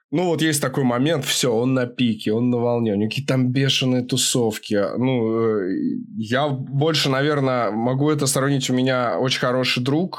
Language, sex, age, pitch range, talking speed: Russian, male, 20-39, 115-145 Hz, 175 wpm